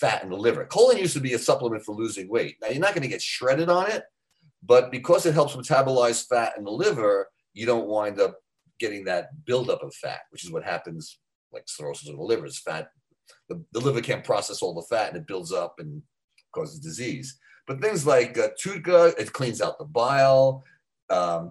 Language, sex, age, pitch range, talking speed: English, male, 40-59, 120-185 Hz, 215 wpm